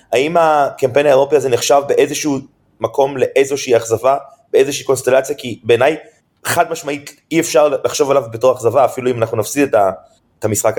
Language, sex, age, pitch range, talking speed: Hebrew, male, 30-49, 115-165 Hz, 150 wpm